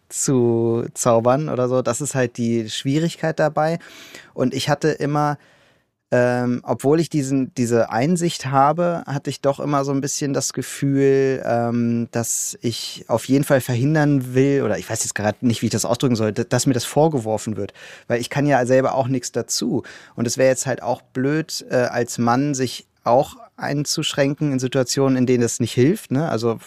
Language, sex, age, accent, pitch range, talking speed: German, male, 30-49, German, 120-145 Hz, 185 wpm